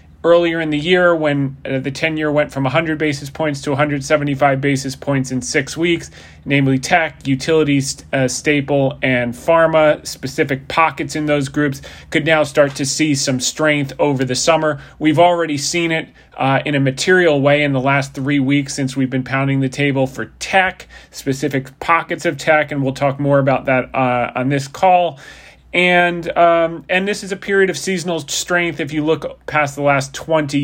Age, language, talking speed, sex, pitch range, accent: 30-49, English, 185 wpm, male, 135-155 Hz, American